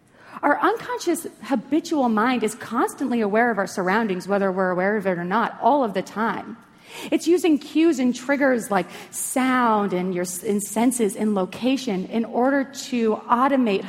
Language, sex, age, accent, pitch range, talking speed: English, female, 30-49, American, 210-285 Hz, 160 wpm